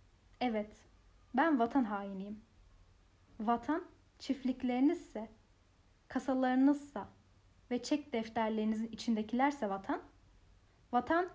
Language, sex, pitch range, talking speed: Turkish, female, 220-275 Hz, 70 wpm